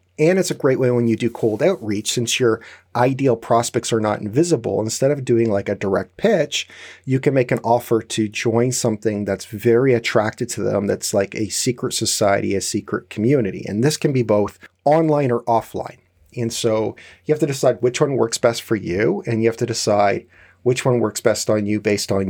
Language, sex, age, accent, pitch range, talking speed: English, male, 40-59, American, 105-125 Hz, 210 wpm